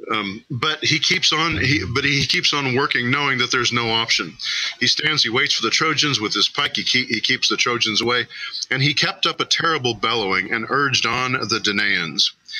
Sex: male